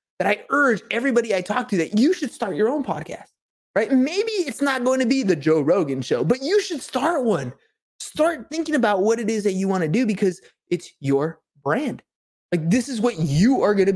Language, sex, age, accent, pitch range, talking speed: English, male, 20-39, American, 165-230 Hz, 230 wpm